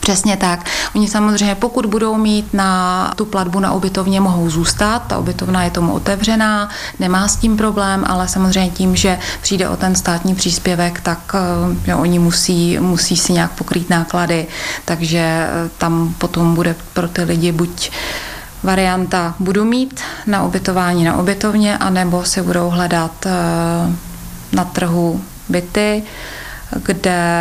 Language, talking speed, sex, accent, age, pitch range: Czech, 140 wpm, female, native, 30-49, 170-190 Hz